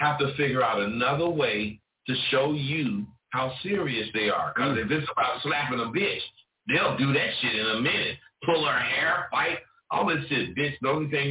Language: English